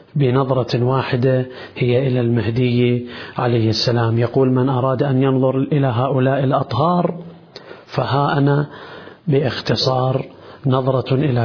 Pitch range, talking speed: 125-160 Hz, 105 wpm